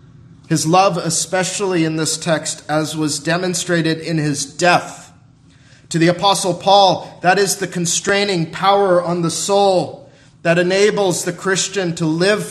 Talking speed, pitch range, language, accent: 145 wpm, 160-205 Hz, English, American